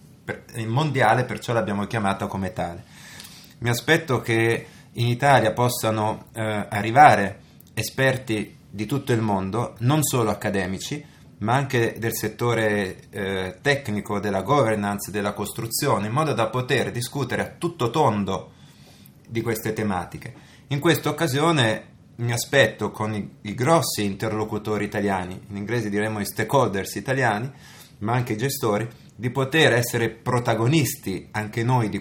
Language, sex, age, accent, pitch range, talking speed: Italian, male, 30-49, native, 105-135 Hz, 135 wpm